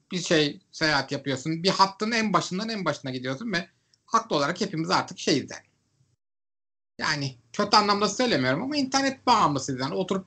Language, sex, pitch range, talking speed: Turkish, male, 130-190 Hz, 150 wpm